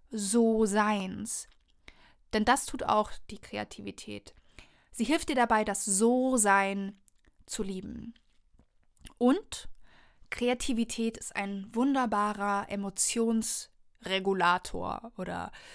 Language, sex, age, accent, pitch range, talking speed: German, female, 20-39, German, 210-260 Hz, 85 wpm